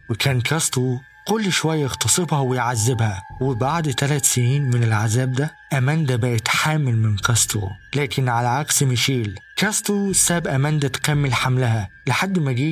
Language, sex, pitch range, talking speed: Arabic, male, 120-150 Hz, 135 wpm